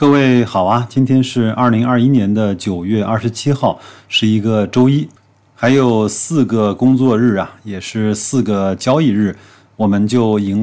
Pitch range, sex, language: 100-115 Hz, male, Chinese